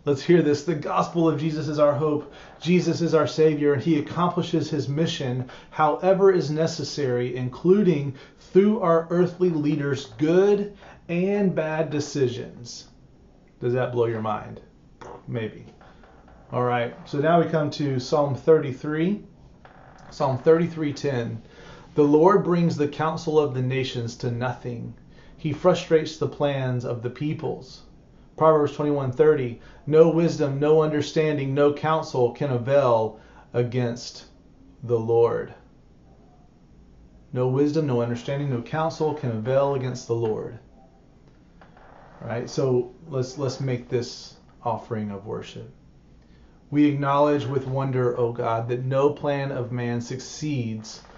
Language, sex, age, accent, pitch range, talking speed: English, male, 30-49, American, 125-155 Hz, 130 wpm